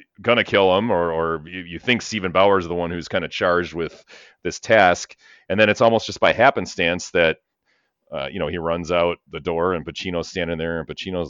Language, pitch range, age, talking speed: English, 75-90 Hz, 30-49, 220 wpm